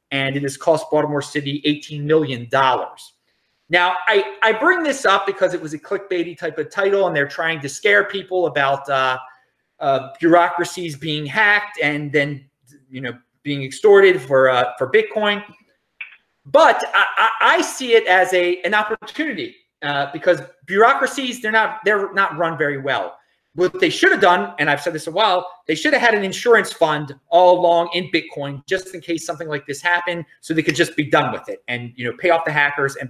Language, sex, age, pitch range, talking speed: English, male, 30-49, 145-200 Hz, 200 wpm